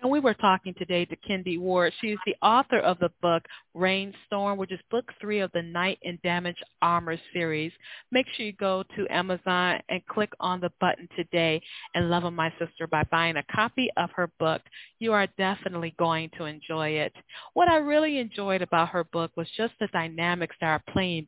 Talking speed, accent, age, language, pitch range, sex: 205 wpm, American, 40-59, English, 170-220 Hz, female